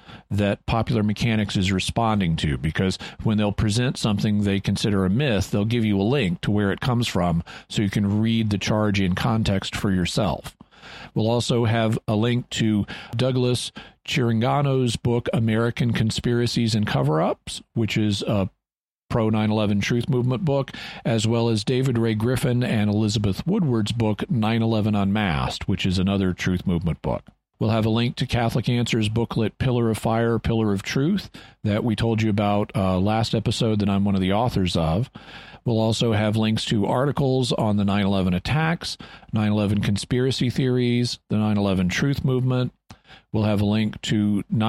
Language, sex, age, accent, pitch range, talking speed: English, male, 50-69, American, 105-120 Hz, 170 wpm